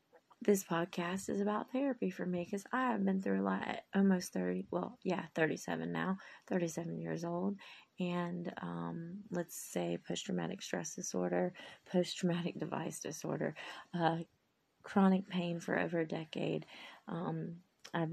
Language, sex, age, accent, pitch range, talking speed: English, female, 30-49, American, 165-195 Hz, 140 wpm